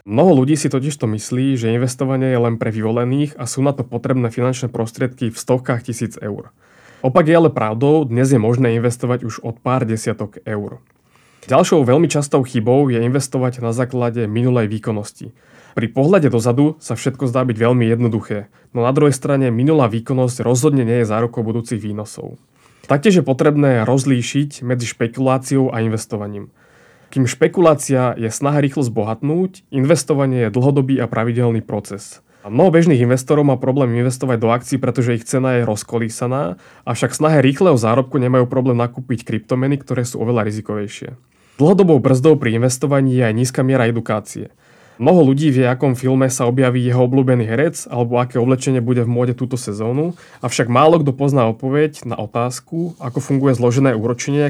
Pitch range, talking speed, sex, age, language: 115-135 Hz, 165 wpm, male, 20-39, Slovak